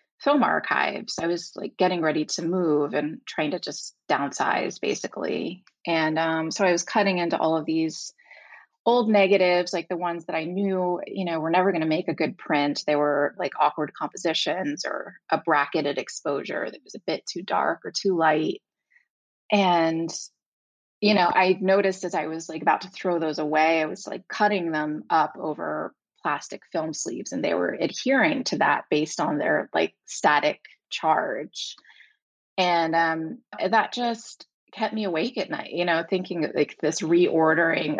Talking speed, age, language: 175 wpm, 20-39, English